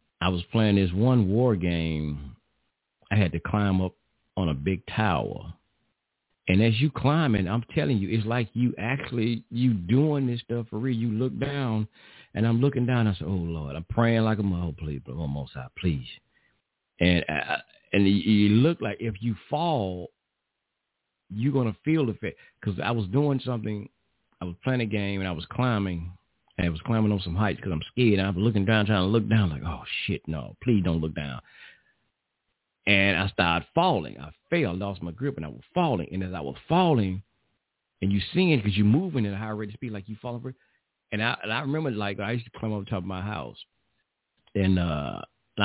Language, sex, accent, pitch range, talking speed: English, male, American, 90-115 Hz, 210 wpm